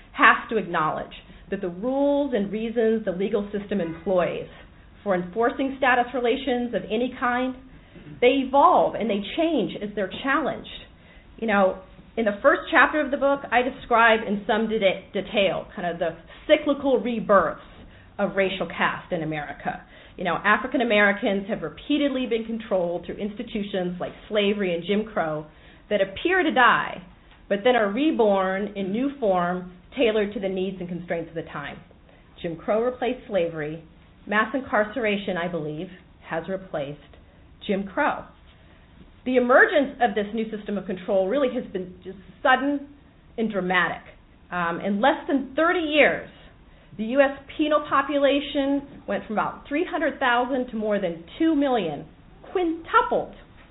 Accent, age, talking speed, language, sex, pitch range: American, 40-59, 150 wpm, English, female, 190-265 Hz